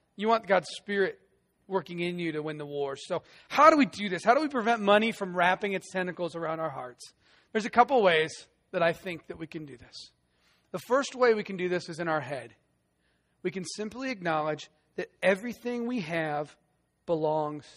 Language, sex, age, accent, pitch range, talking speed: English, male, 40-59, American, 180-265 Hz, 205 wpm